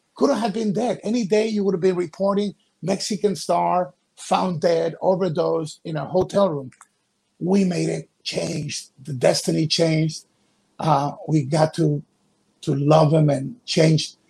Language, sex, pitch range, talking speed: English, male, 160-195 Hz, 150 wpm